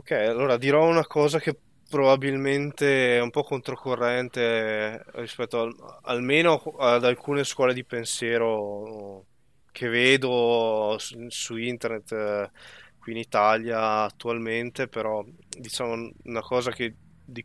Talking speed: 110 wpm